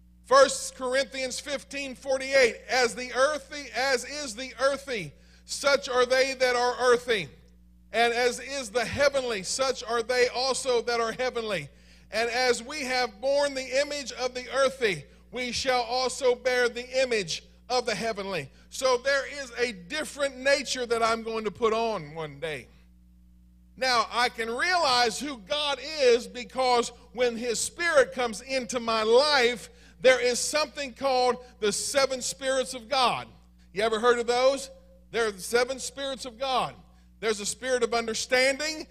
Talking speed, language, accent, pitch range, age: 155 wpm, English, American, 155-255 Hz, 40-59